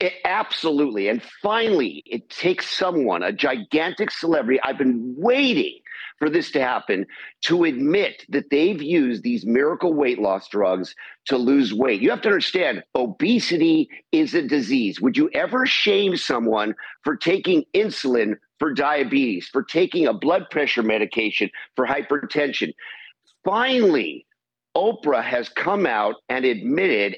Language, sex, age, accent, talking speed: English, male, 50-69, American, 135 wpm